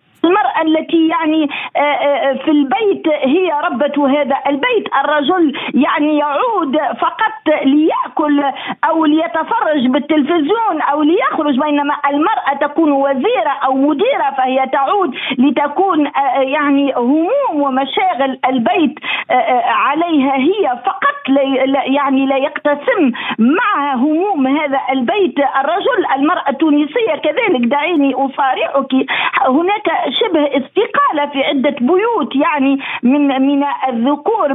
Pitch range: 265-325 Hz